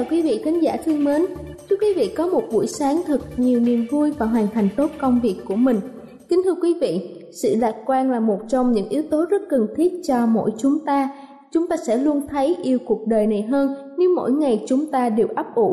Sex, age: female, 20-39